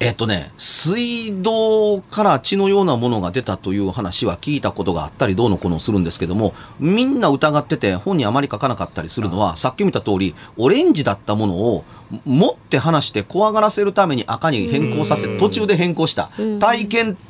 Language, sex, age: Japanese, male, 30-49